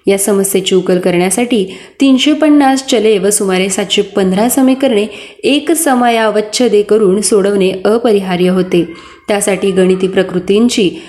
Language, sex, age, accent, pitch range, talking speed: Marathi, female, 20-39, native, 195-240 Hz, 115 wpm